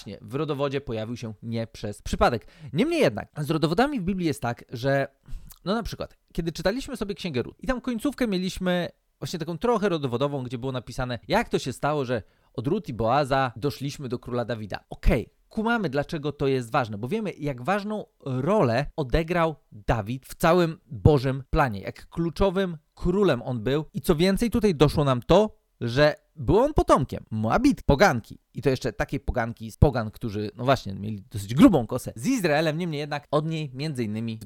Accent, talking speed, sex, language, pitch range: native, 185 wpm, male, Polish, 125-180 Hz